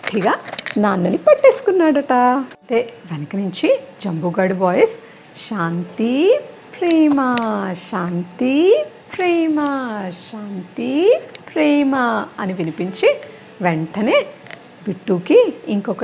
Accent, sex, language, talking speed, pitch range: native, female, Telugu, 65 wpm, 185-305 Hz